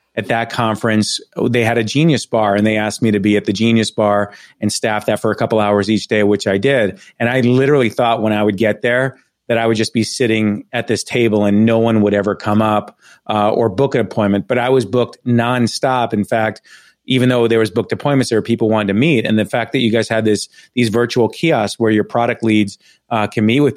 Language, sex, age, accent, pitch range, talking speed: English, male, 30-49, American, 110-125 Hz, 245 wpm